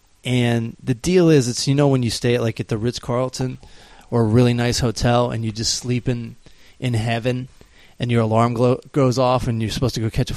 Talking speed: 235 wpm